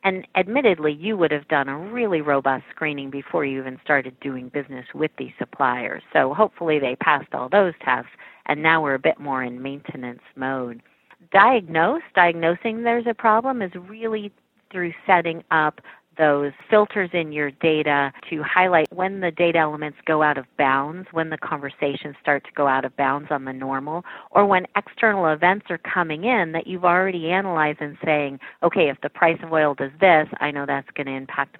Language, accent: English, American